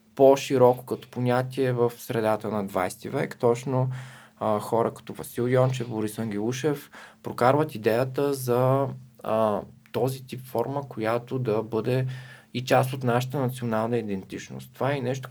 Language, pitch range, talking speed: Bulgarian, 110-130 Hz, 135 wpm